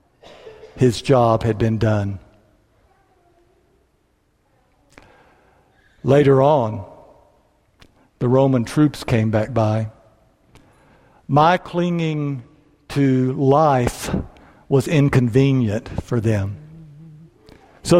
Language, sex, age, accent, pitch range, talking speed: English, male, 60-79, American, 110-150 Hz, 75 wpm